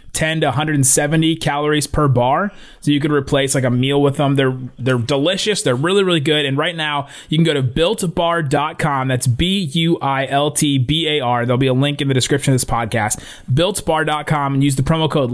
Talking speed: 190 wpm